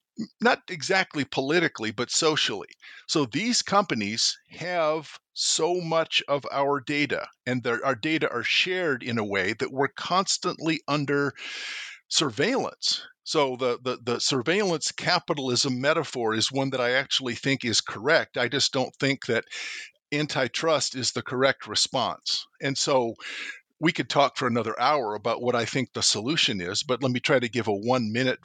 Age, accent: 50-69, American